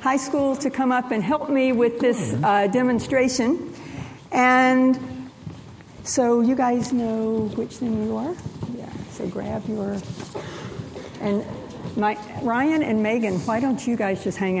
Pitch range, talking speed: 200-265 Hz, 150 wpm